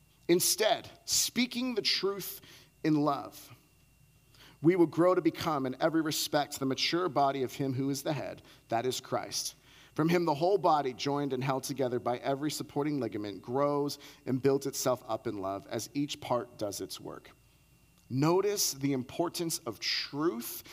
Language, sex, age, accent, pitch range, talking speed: English, male, 40-59, American, 135-180 Hz, 165 wpm